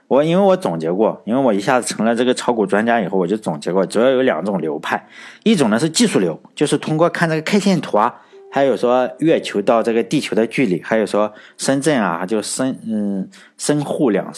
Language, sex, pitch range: Chinese, male, 105-160 Hz